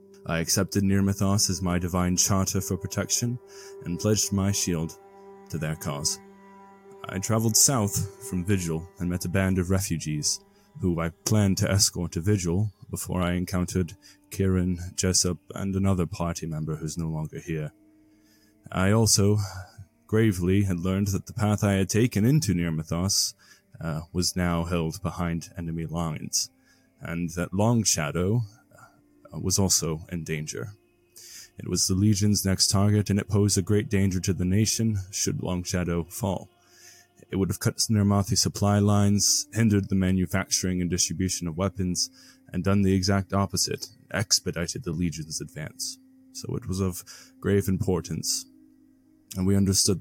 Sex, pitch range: male, 90-105 Hz